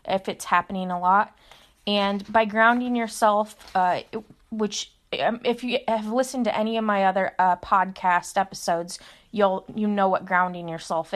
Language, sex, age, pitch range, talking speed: English, female, 20-39, 190-230 Hz, 165 wpm